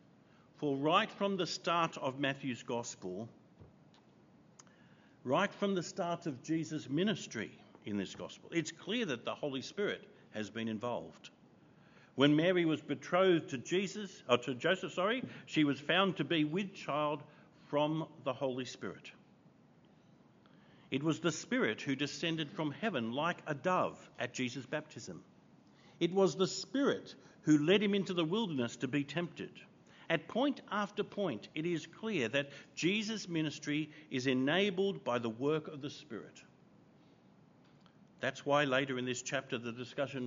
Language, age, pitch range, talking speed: English, 50-69, 135-185 Hz, 150 wpm